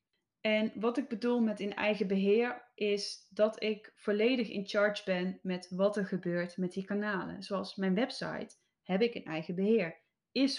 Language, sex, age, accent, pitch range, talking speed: Dutch, female, 10-29, Dutch, 190-235 Hz, 175 wpm